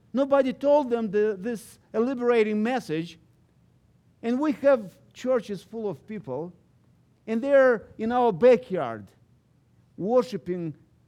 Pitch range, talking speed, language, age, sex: 140-220 Hz, 105 wpm, English, 50-69, male